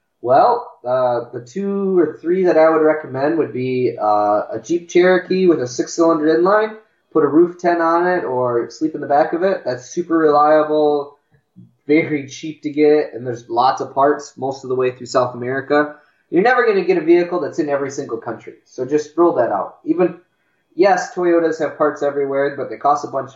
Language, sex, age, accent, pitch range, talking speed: English, male, 20-39, American, 125-165 Hz, 205 wpm